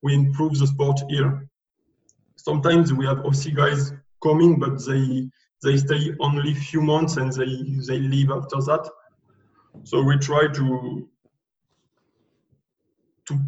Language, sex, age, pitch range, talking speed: English, male, 20-39, 135-155 Hz, 135 wpm